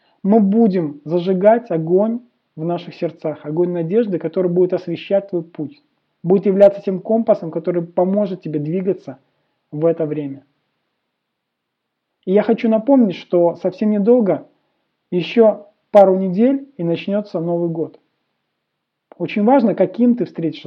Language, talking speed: Russian, 130 wpm